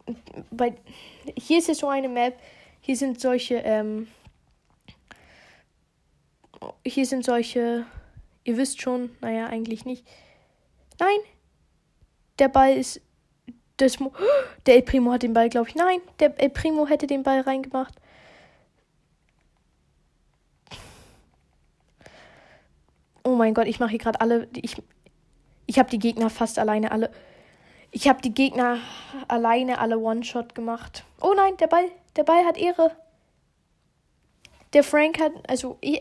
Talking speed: 135 wpm